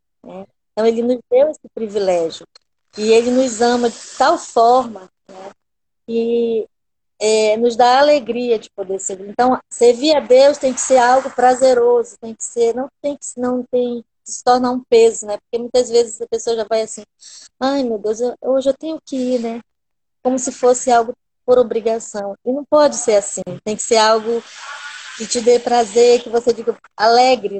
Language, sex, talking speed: Portuguese, female, 190 wpm